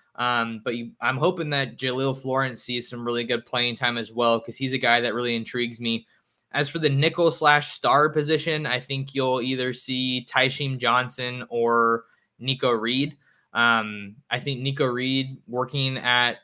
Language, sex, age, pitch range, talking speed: English, male, 20-39, 120-140 Hz, 175 wpm